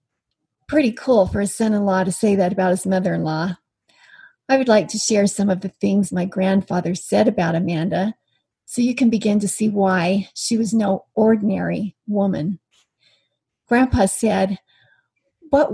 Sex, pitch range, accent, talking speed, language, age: female, 195-235 Hz, American, 155 wpm, English, 50-69